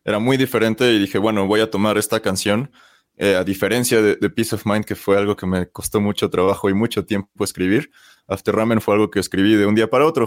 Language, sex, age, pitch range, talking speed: Spanish, male, 20-39, 95-115 Hz, 245 wpm